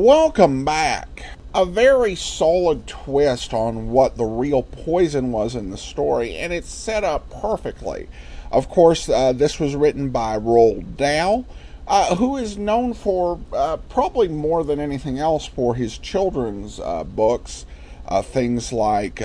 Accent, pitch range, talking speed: American, 120-170 Hz, 150 wpm